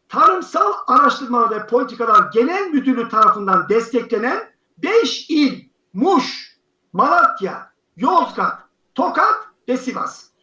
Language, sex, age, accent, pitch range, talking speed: Turkish, male, 50-69, native, 235-345 Hz, 90 wpm